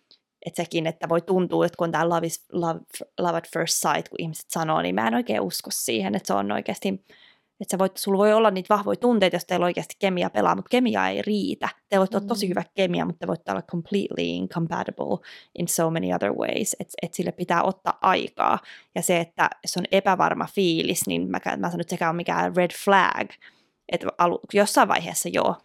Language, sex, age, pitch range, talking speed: Finnish, female, 20-39, 170-205 Hz, 205 wpm